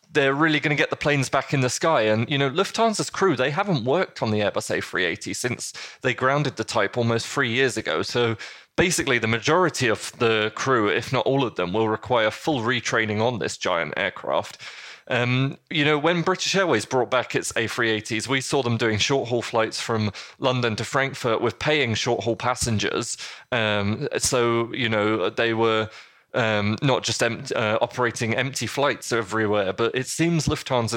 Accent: British